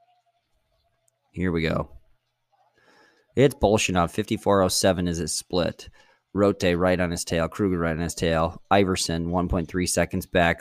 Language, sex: English, male